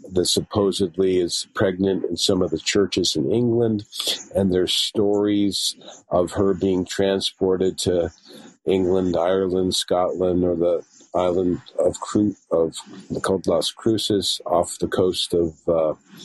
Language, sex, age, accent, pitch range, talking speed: English, male, 50-69, American, 90-105 Hz, 135 wpm